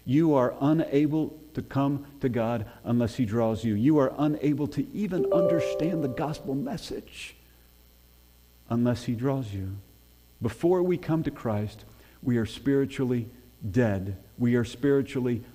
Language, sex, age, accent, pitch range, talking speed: English, male, 50-69, American, 105-135 Hz, 140 wpm